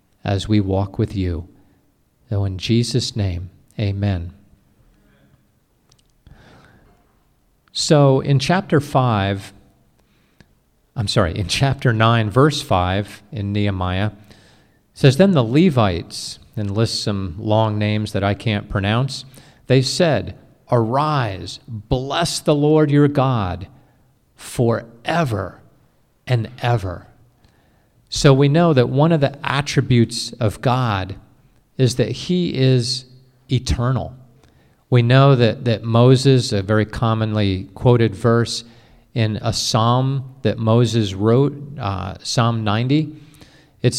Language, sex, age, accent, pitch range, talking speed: English, male, 50-69, American, 105-135 Hz, 115 wpm